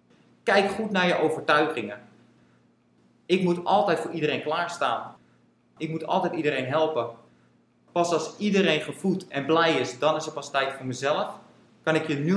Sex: male